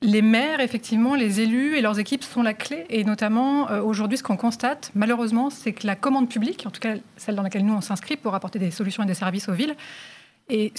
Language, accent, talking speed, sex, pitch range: French, French, 235 wpm, female, 205-250 Hz